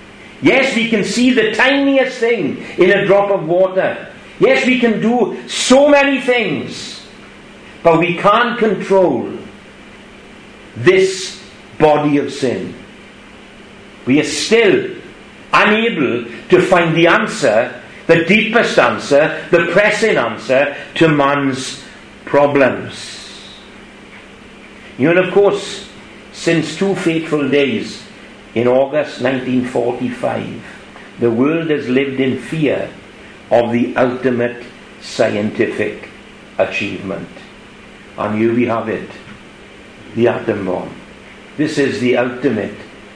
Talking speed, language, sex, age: 110 wpm, English, male, 60-79